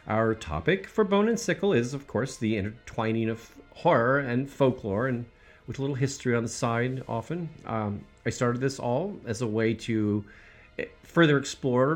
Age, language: 40-59, English